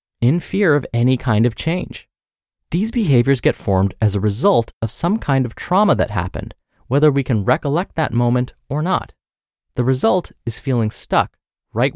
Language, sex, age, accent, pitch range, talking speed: English, male, 30-49, American, 110-155 Hz, 175 wpm